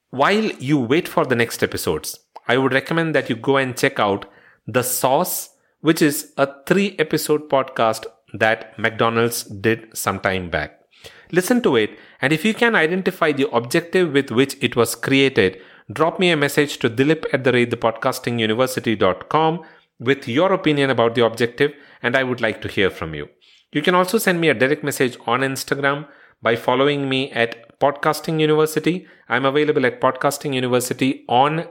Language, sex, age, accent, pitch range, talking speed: English, male, 40-59, Indian, 115-155 Hz, 170 wpm